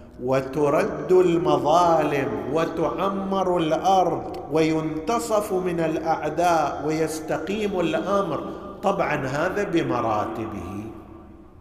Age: 50-69